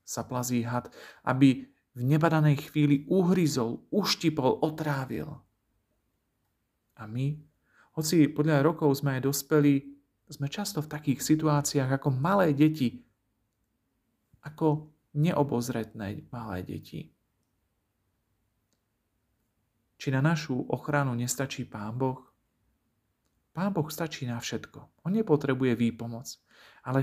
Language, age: Slovak, 40-59